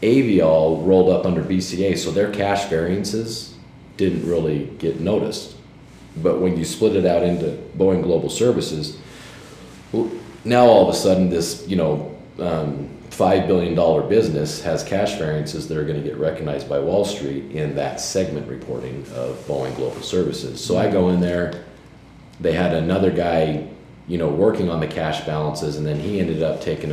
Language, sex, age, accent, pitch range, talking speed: English, male, 40-59, American, 75-90 Hz, 170 wpm